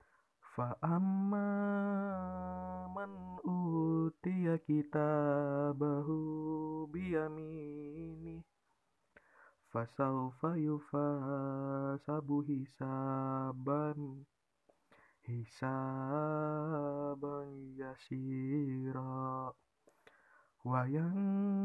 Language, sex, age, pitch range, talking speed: Indonesian, male, 20-39, 130-160 Hz, 35 wpm